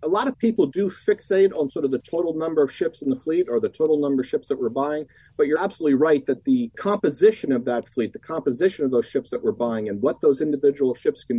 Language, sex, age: English, male, 40-59